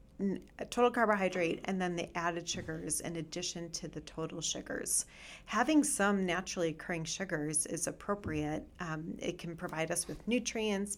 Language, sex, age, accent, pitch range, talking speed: English, female, 40-59, American, 160-190 Hz, 150 wpm